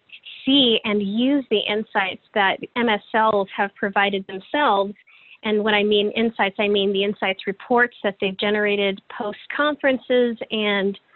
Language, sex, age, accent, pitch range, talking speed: English, female, 20-39, American, 200-235 Hz, 130 wpm